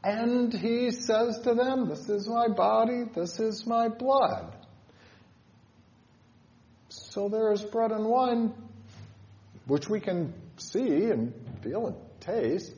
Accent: American